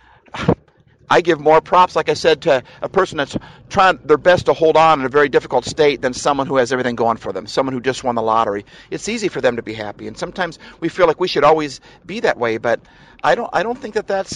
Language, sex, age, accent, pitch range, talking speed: English, male, 50-69, American, 115-155 Hz, 260 wpm